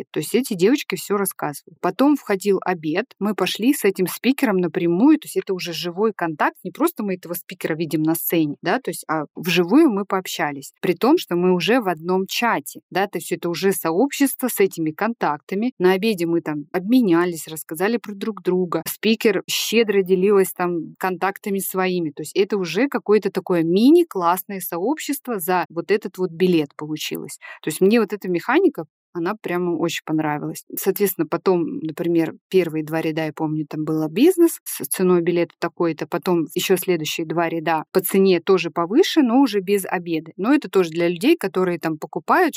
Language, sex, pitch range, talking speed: Russian, female, 170-210 Hz, 180 wpm